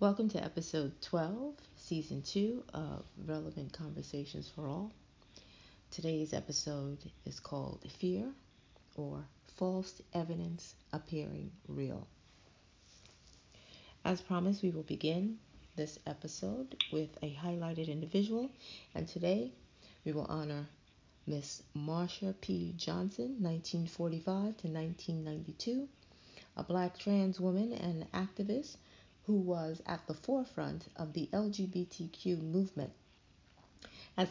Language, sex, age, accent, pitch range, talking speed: English, female, 40-59, American, 160-200 Hz, 105 wpm